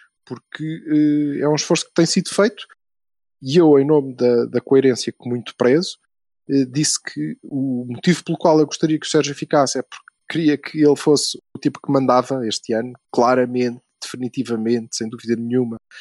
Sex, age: male, 20-39